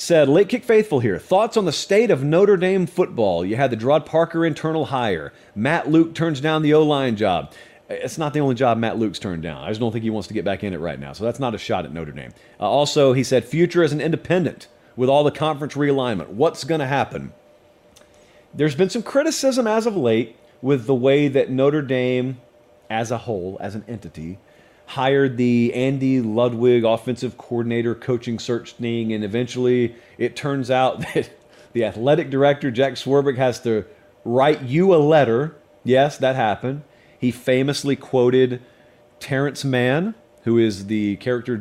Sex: male